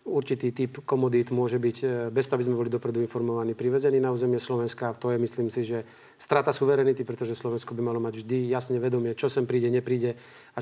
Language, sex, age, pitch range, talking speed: Slovak, male, 40-59, 120-135 Hz, 205 wpm